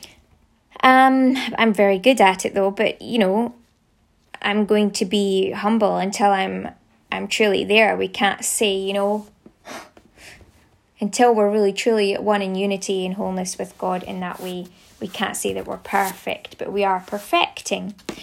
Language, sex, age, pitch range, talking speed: English, female, 20-39, 200-240 Hz, 165 wpm